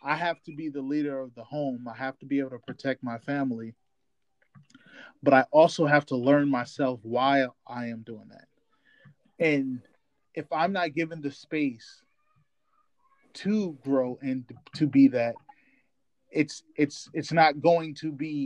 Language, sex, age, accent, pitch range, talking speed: English, male, 30-49, American, 130-160 Hz, 165 wpm